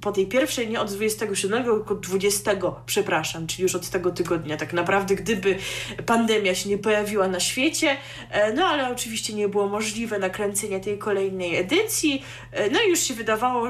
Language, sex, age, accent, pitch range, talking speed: Polish, female, 20-39, native, 190-255 Hz, 165 wpm